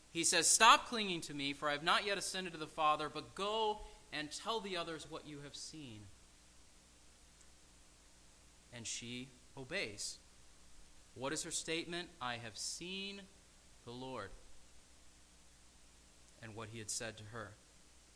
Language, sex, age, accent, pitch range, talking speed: English, male, 30-49, American, 115-155 Hz, 145 wpm